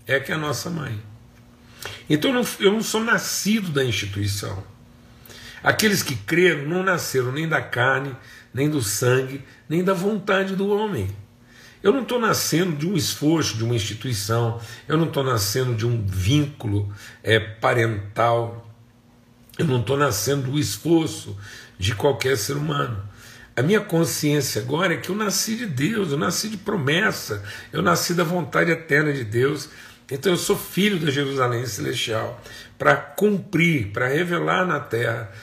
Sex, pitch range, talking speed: male, 115-165 Hz, 155 wpm